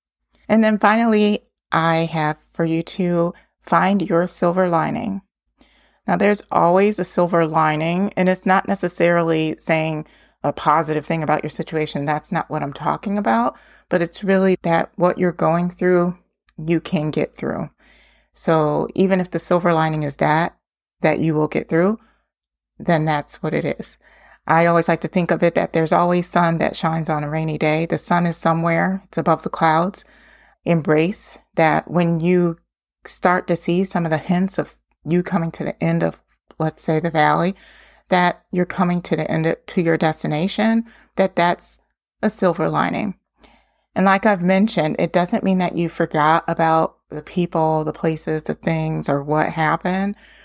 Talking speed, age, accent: 175 wpm, 30-49, American